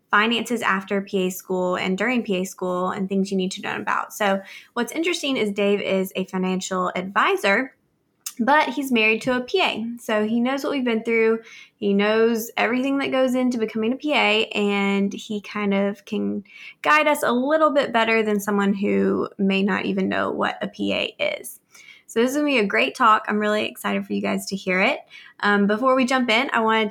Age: 20-39